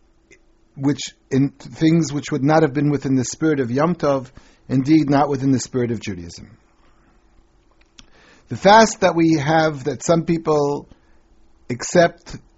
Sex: male